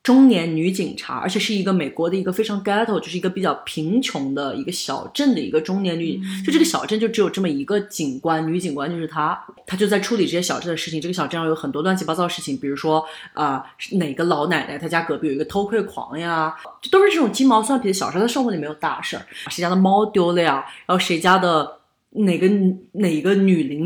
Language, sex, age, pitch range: Chinese, female, 20-39, 160-215 Hz